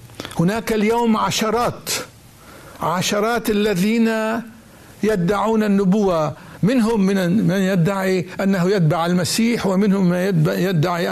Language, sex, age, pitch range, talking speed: Arabic, male, 60-79, 175-210 Hz, 95 wpm